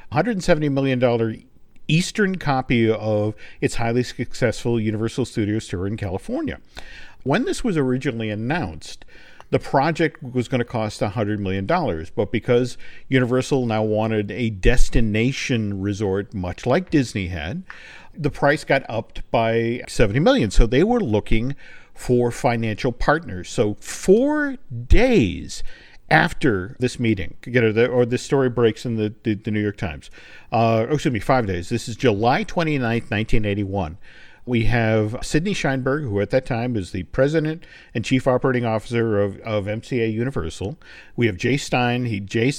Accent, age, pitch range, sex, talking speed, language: American, 50-69, 110-130 Hz, male, 150 wpm, English